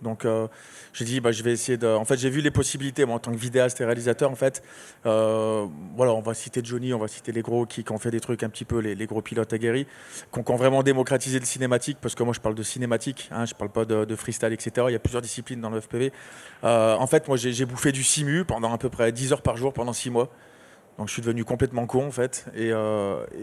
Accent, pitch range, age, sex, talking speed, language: French, 110-130 Hz, 20-39, male, 280 wpm, French